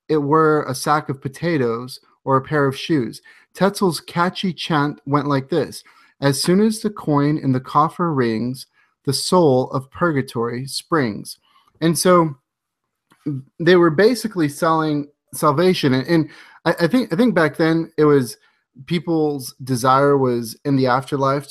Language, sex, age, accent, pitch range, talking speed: English, male, 30-49, American, 130-160 Hz, 155 wpm